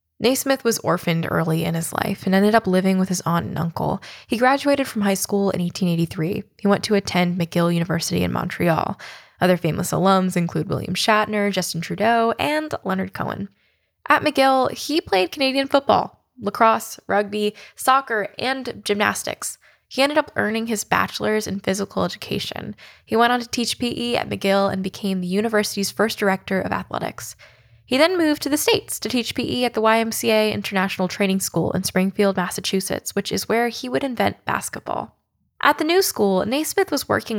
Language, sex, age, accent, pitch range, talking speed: English, female, 10-29, American, 185-240 Hz, 175 wpm